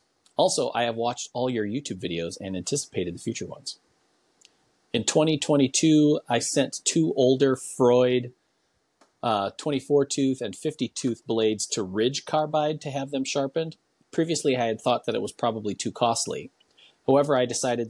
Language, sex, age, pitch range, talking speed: English, male, 30-49, 105-140 Hz, 150 wpm